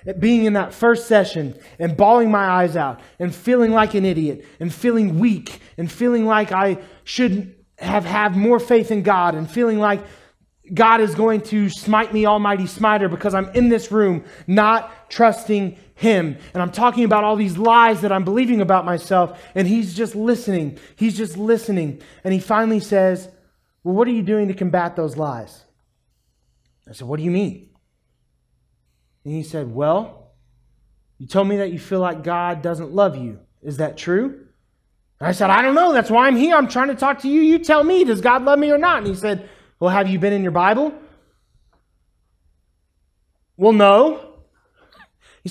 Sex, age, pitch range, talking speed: male, 20-39, 170-230 Hz, 185 wpm